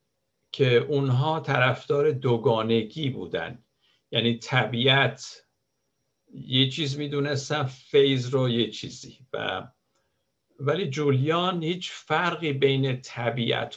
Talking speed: 90 wpm